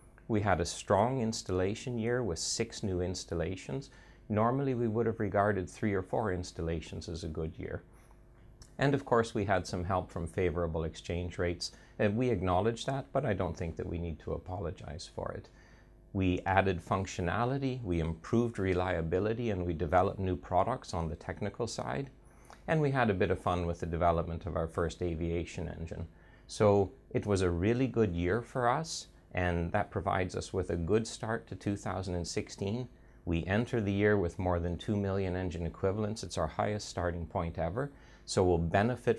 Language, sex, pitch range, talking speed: Swedish, male, 90-115 Hz, 180 wpm